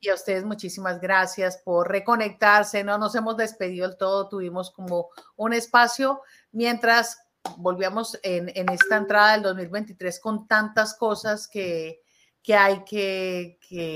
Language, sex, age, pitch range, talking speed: Spanish, female, 40-59, 185-225 Hz, 140 wpm